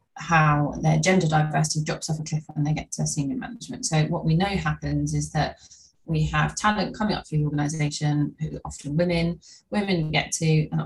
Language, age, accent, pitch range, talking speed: English, 20-39, British, 150-165 Hz, 200 wpm